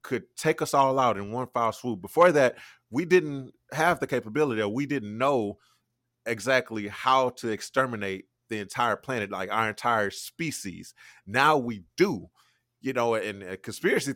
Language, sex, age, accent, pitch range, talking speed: English, male, 30-49, American, 100-125 Hz, 165 wpm